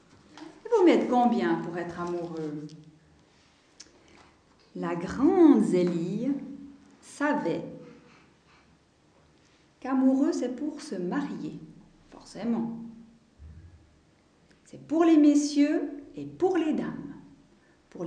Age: 50-69